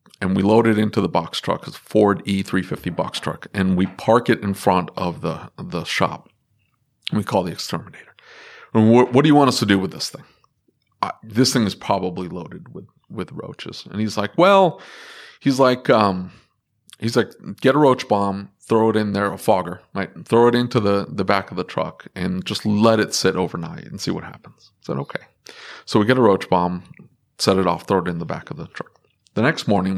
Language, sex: English, male